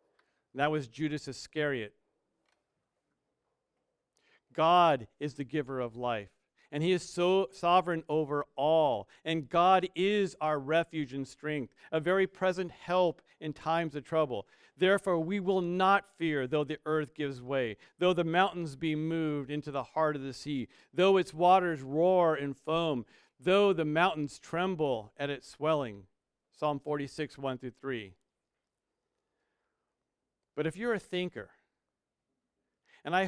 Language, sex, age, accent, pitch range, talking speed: English, male, 50-69, American, 145-215 Hz, 140 wpm